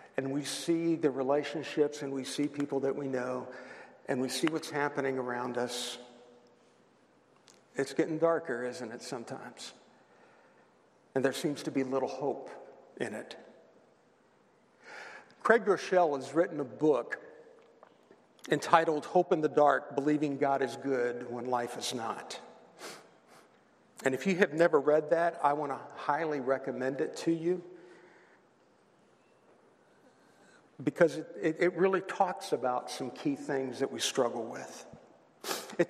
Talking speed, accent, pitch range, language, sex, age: 140 wpm, American, 135-180 Hz, English, male, 50-69